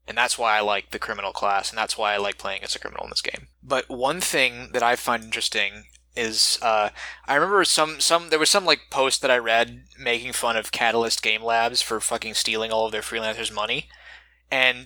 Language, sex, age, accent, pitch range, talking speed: English, male, 20-39, American, 110-125 Hz, 225 wpm